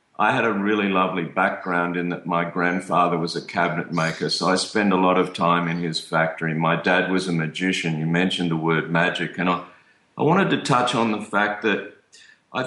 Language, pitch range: English, 90-115 Hz